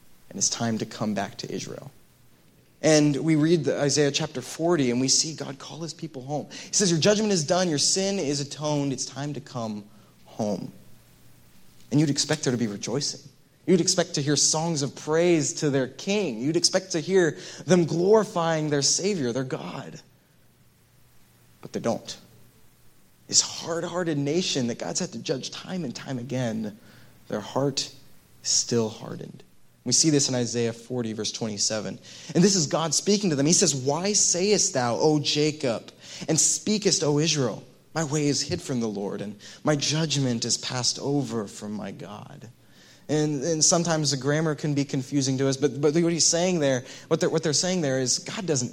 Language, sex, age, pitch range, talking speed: English, male, 20-39, 125-170 Hz, 185 wpm